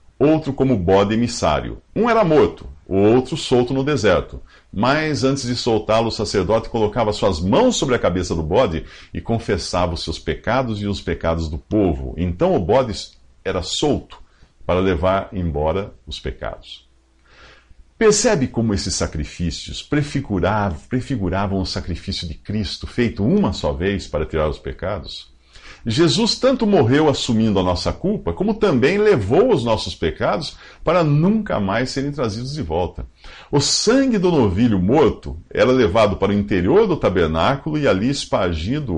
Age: 50-69